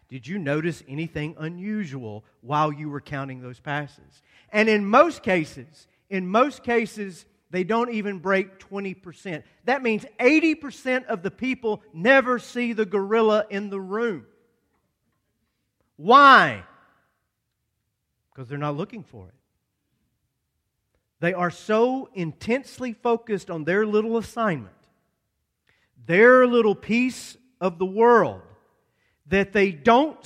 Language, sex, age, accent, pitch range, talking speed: English, male, 40-59, American, 150-220 Hz, 120 wpm